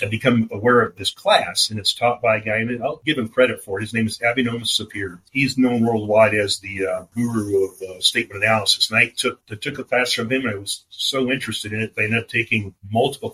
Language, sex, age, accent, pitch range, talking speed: English, male, 40-59, American, 100-110 Hz, 250 wpm